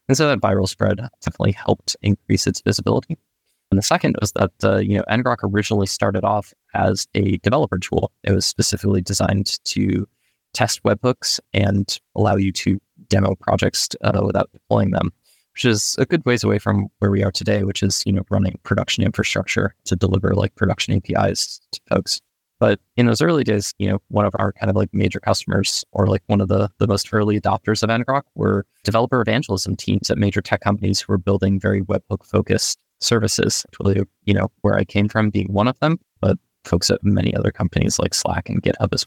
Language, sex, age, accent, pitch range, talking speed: English, male, 20-39, American, 95-110 Hz, 200 wpm